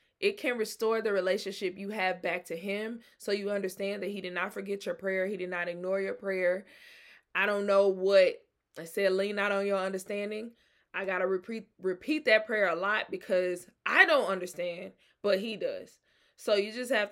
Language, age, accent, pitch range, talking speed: English, 20-39, American, 185-220 Hz, 200 wpm